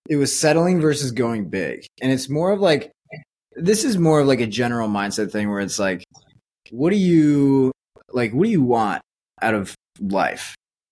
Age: 20-39